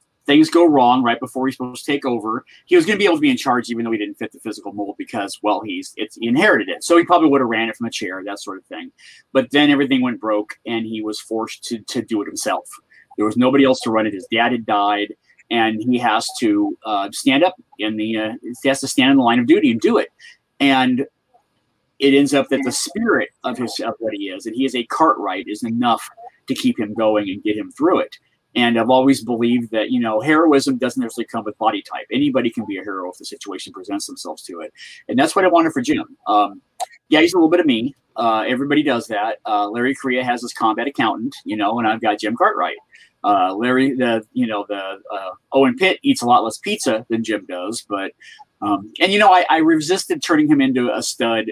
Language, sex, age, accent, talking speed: English, male, 30-49, American, 250 wpm